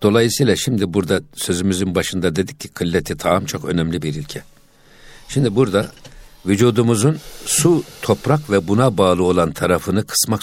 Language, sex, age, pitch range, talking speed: Turkish, male, 60-79, 80-105 Hz, 140 wpm